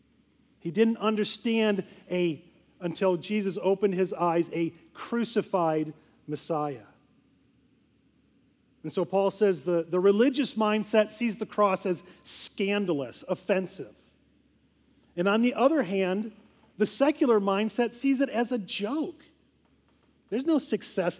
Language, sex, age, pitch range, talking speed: English, male, 40-59, 180-230 Hz, 120 wpm